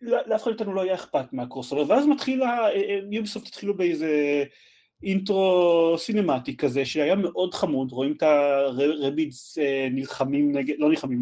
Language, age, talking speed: Hebrew, 30-49, 140 wpm